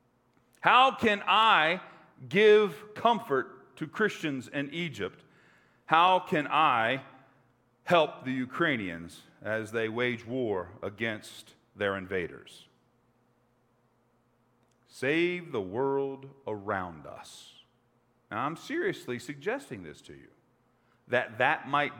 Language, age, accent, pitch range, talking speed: English, 50-69, American, 120-185 Hz, 100 wpm